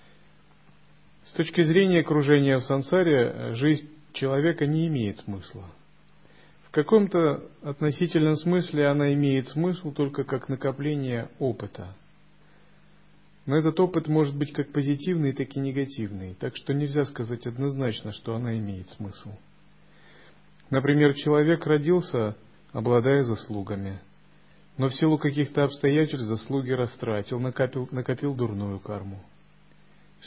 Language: Russian